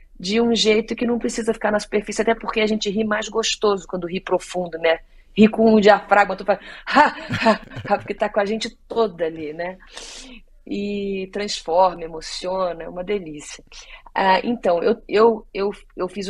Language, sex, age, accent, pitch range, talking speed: Portuguese, female, 30-49, Brazilian, 175-215 Hz, 180 wpm